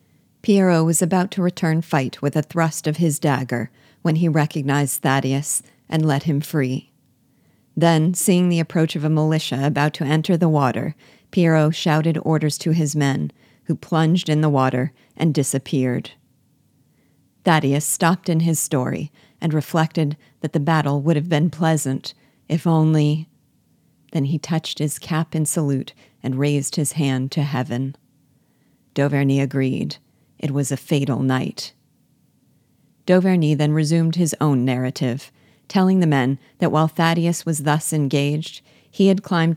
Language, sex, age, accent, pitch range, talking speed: English, female, 40-59, American, 140-165 Hz, 150 wpm